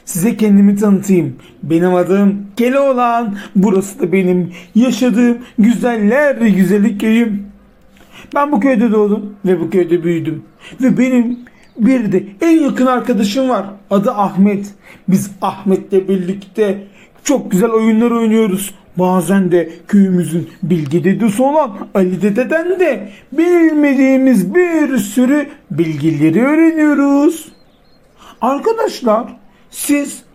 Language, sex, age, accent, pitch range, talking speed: Turkish, male, 50-69, native, 190-255 Hz, 110 wpm